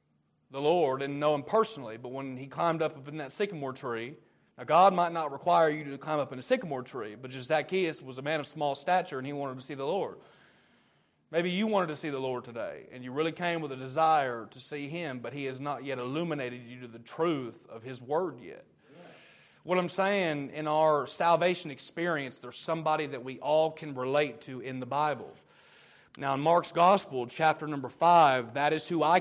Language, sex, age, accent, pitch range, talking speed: English, male, 30-49, American, 130-175 Hz, 215 wpm